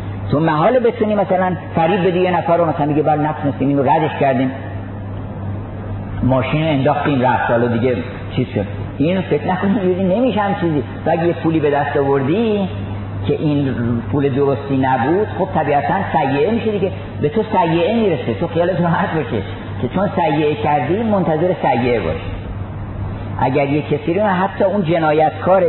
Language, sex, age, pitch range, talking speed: Persian, male, 50-69, 100-165 Hz, 155 wpm